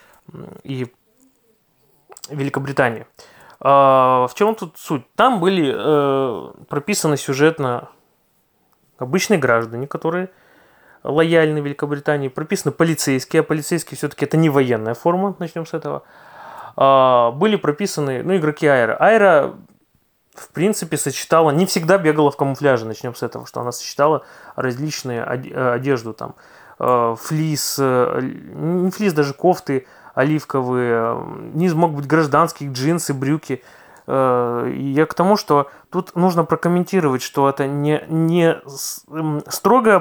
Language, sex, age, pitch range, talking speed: Russian, male, 20-39, 135-165 Hz, 115 wpm